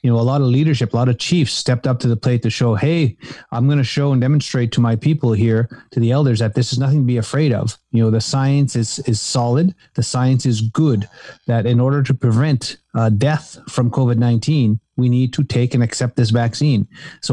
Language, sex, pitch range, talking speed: English, male, 115-140 Hz, 235 wpm